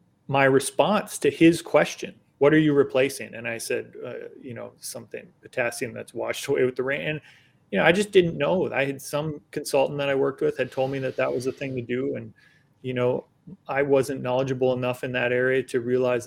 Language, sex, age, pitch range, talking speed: English, male, 30-49, 125-150 Hz, 220 wpm